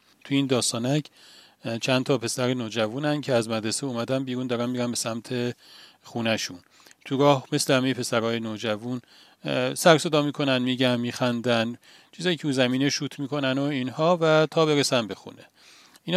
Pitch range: 115-140 Hz